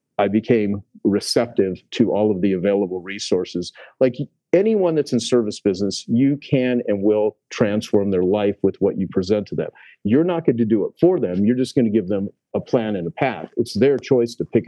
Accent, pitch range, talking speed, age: American, 95-120 Hz, 215 wpm, 50-69